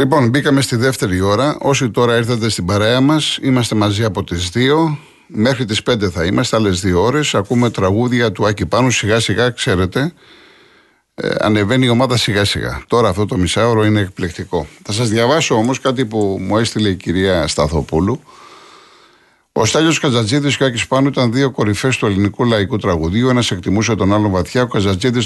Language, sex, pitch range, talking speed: Greek, male, 100-125 Hz, 180 wpm